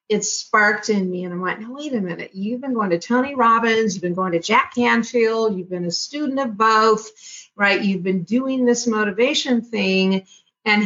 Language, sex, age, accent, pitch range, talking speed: English, female, 50-69, American, 195-245 Hz, 205 wpm